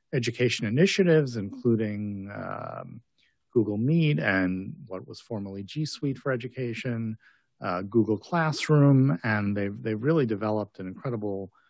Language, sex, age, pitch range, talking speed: English, male, 40-59, 95-125 Hz, 125 wpm